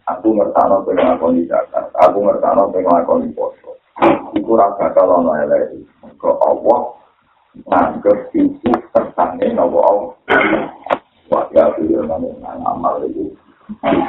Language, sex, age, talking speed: Indonesian, male, 50-69, 80 wpm